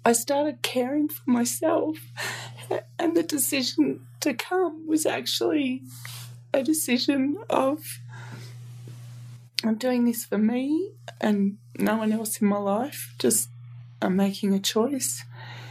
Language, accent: English, Australian